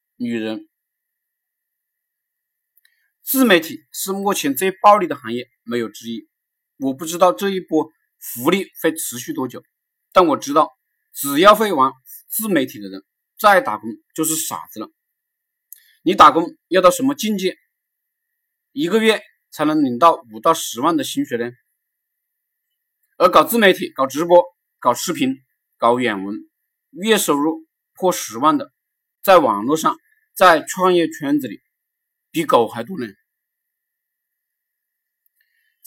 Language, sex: Chinese, male